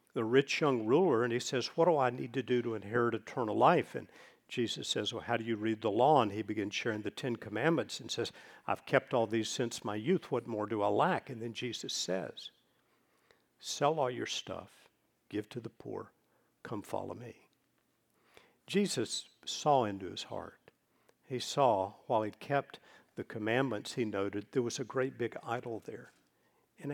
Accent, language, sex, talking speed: American, English, male, 190 wpm